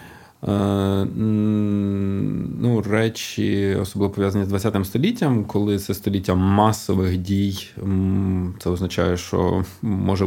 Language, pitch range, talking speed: Ukrainian, 95-110 Hz, 95 wpm